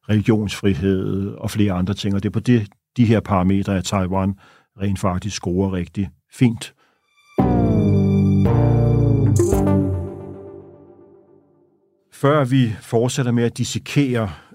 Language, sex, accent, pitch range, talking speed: Danish, male, native, 105-125 Hz, 105 wpm